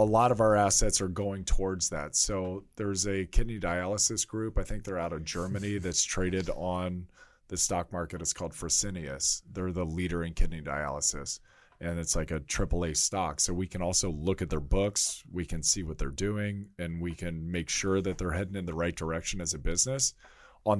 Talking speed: 210 wpm